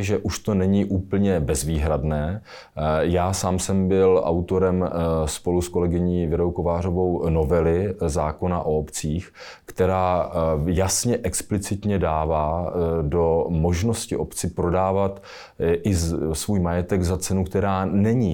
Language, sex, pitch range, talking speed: Czech, male, 85-95 Hz, 115 wpm